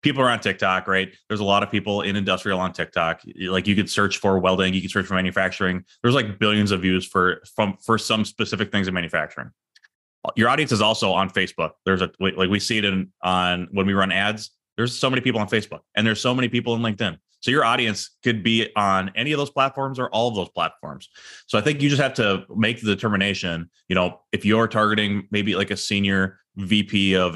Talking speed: 230 wpm